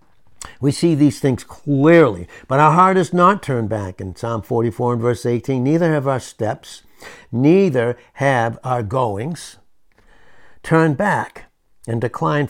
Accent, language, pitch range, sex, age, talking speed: American, English, 110-140 Hz, male, 60-79, 145 wpm